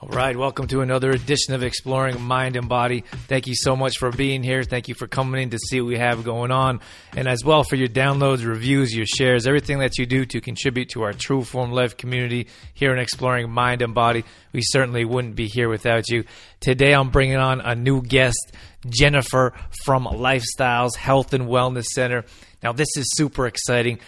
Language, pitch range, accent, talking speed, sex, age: English, 115-130 Hz, American, 205 wpm, male, 30-49